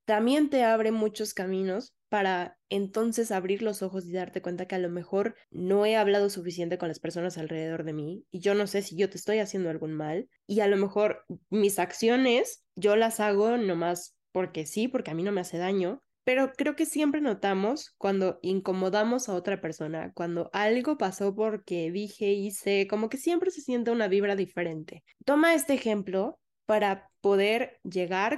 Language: Spanish